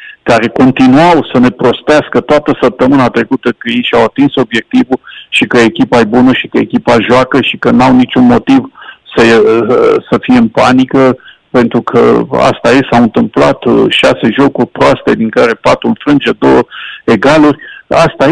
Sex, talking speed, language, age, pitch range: male, 155 wpm, Romanian, 50-69, 120-165 Hz